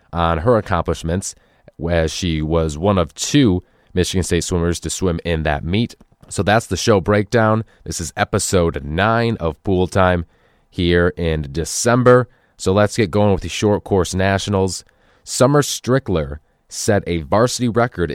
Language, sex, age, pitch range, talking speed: English, male, 30-49, 85-105 Hz, 155 wpm